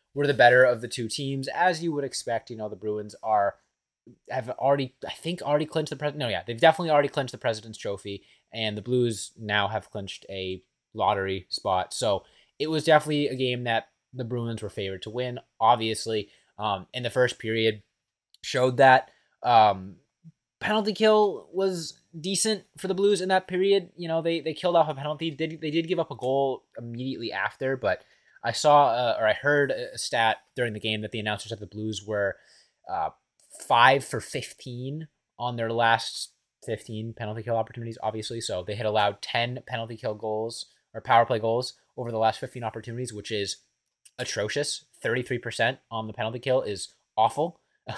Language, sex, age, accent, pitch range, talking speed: English, male, 20-39, American, 110-145 Hz, 185 wpm